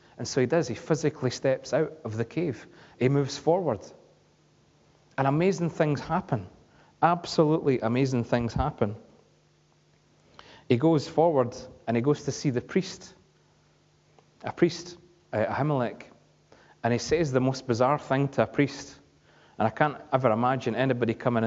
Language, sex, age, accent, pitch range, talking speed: English, male, 30-49, British, 110-140 Hz, 150 wpm